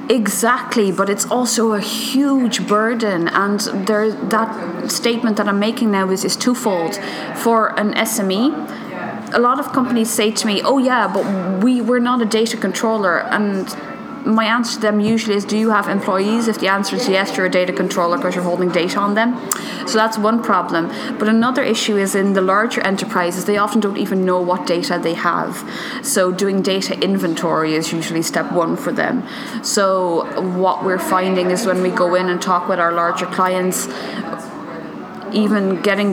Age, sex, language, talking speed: 20-39, female, English, 180 wpm